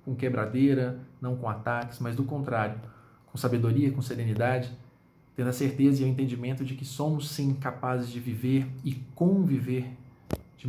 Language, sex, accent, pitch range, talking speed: Portuguese, male, Brazilian, 115-130 Hz, 155 wpm